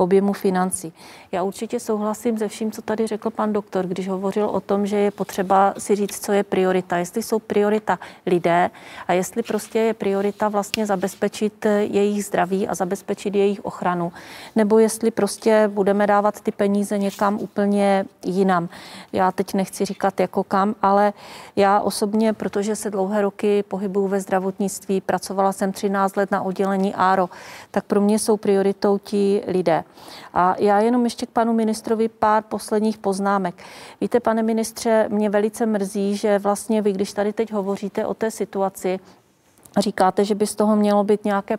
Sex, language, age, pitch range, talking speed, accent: female, Czech, 40-59, 195-215 Hz, 165 wpm, native